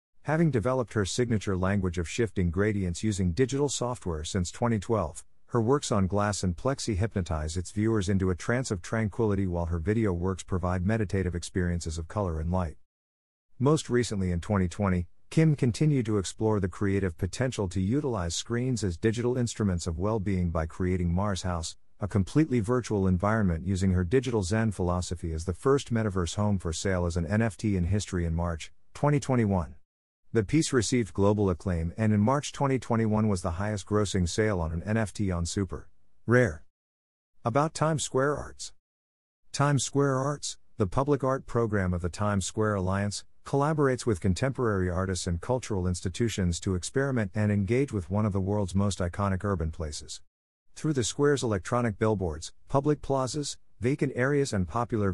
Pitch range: 90-120 Hz